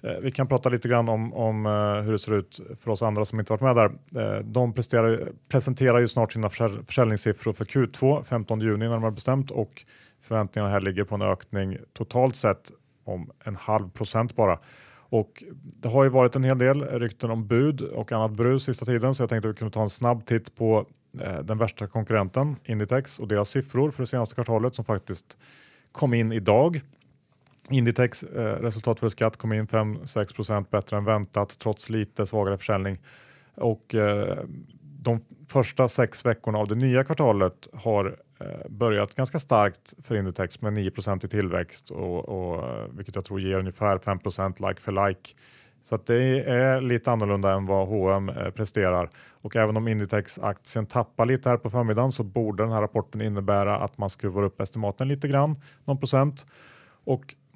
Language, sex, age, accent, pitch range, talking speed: Swedish, male, 30-49, Norwegian, 105-130 Hz, 180 wpm